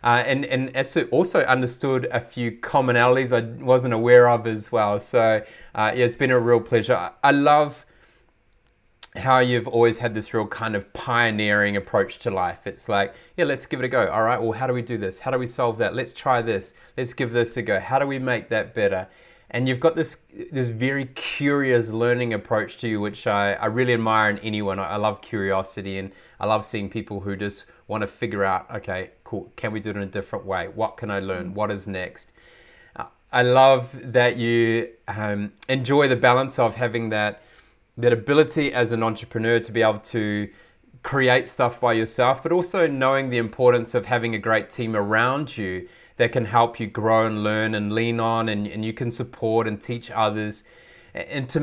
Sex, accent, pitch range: male, Australian, 105-125 Hz